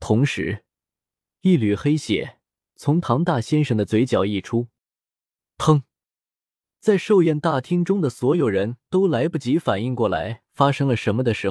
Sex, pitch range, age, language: male, 110-165 Hz, 20-39, Chinese